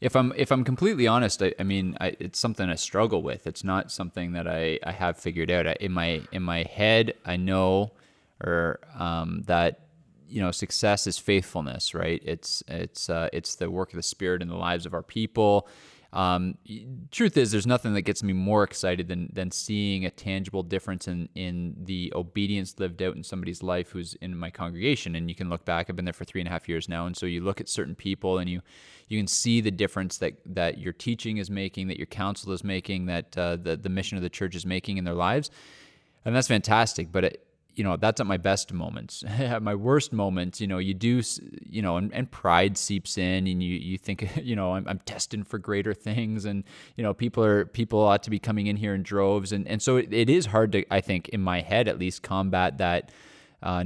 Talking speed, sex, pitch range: 235 wpm, male, 90-105 Hz